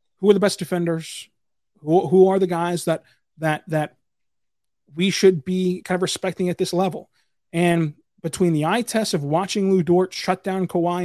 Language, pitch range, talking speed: English, 160-185 Hz, 185 wpm